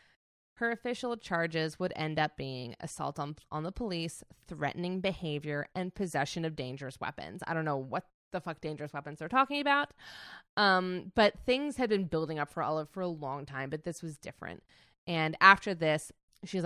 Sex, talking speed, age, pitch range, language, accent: female, 185 wpm, 20-39, 160-235 Hz, English, American